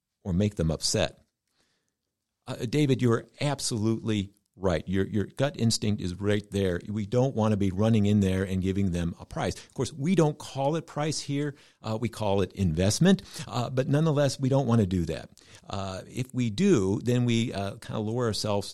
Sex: male